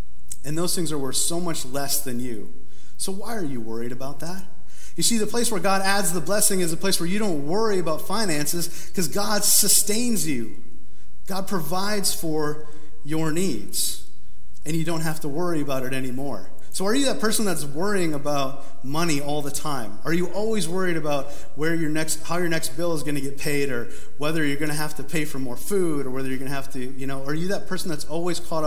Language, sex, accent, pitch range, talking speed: English, male, American, 140-175 Hz, 230 wpm